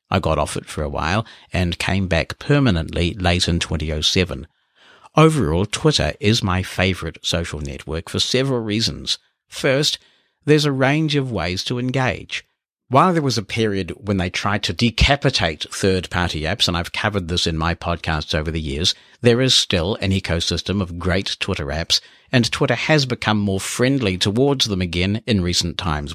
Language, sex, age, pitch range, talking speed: English, male, 60-79, 90-115 Hz, 175 wpm